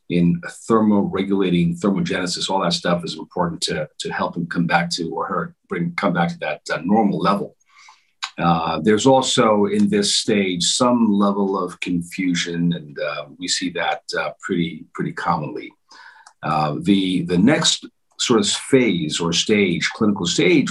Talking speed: 160 wpm